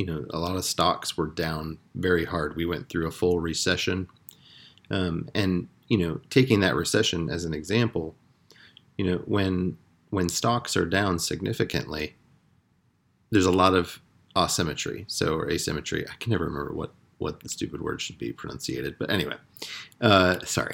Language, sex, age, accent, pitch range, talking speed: English, male, 30-49, American, 85-105 Hz, 170 wpm